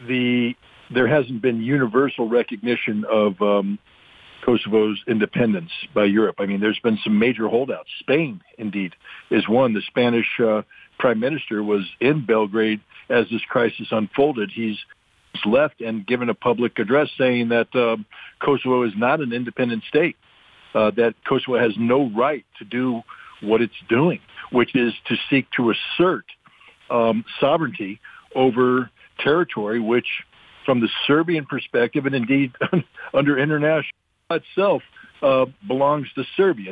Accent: American